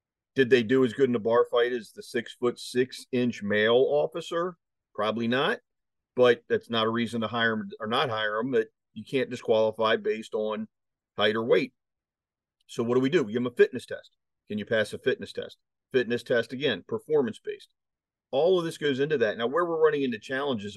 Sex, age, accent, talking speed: male, 40-59, American, 210 wpm